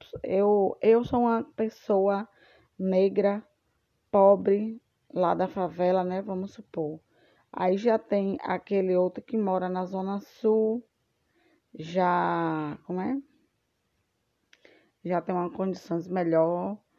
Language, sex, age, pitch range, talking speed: Portuguese, female, 20-39, 175-205 Hz, 110 wpm